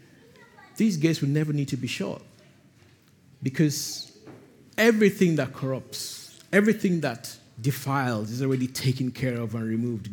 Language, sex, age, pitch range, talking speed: English, male, 50-69, 115-145 Hz, 130 wpm